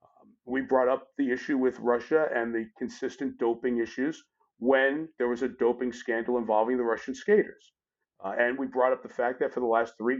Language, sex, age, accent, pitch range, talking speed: English, male, 50-69, American, 115-145 Hz, 200 wpm